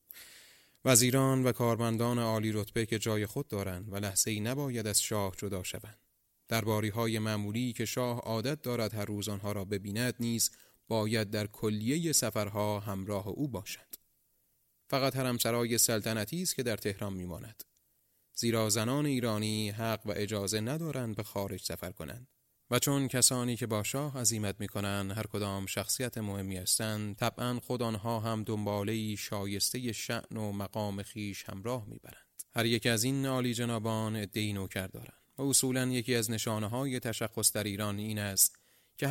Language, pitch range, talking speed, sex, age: Persian, 105-120 Hz, 150 wpm, male, 30-49